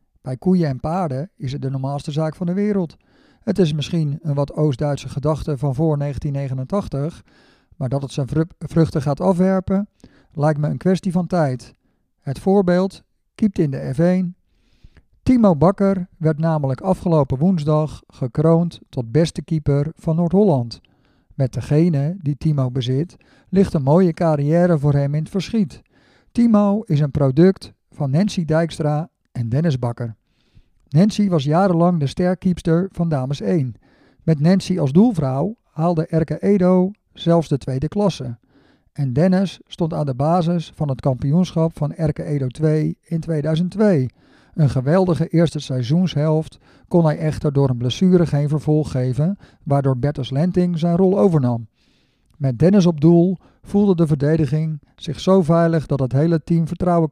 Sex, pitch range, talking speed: male, 140-180 Hz, 150 wpm